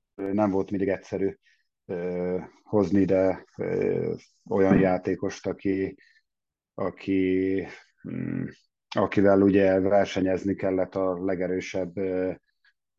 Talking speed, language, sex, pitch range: 90 wpm, Hungarian, male, 90-100 Hz